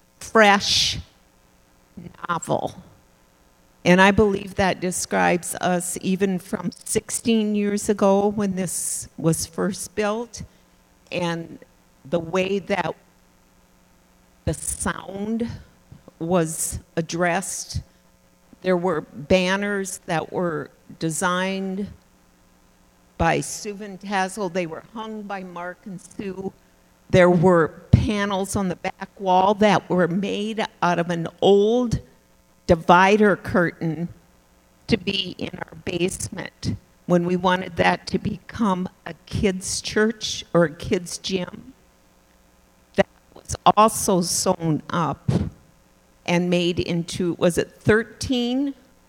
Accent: American